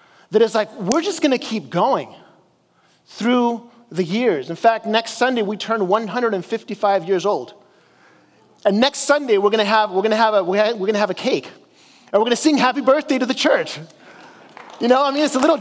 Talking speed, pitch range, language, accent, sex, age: 215 wpm, 205-255 Hz, English, American, male, 30-49